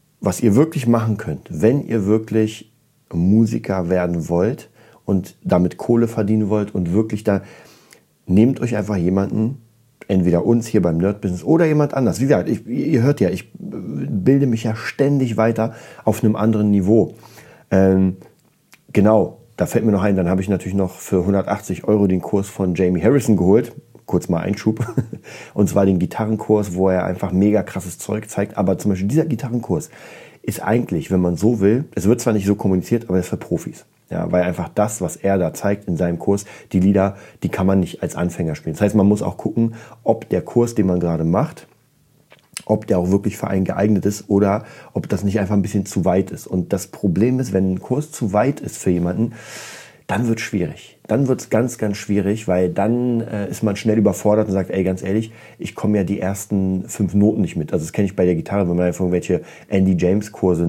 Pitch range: 95-110 Hz